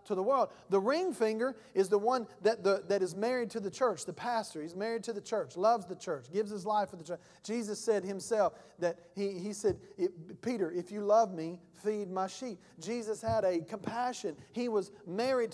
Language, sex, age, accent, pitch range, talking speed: English, male, 40-59, American, 195-250 Hz, 210 wpm